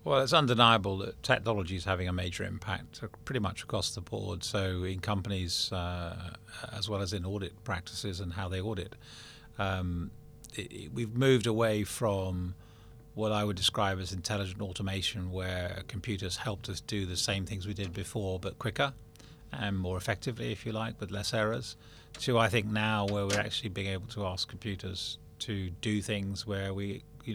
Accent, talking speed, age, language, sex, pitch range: British, 180 wpm, 30-49, English, male, 100-115 Hz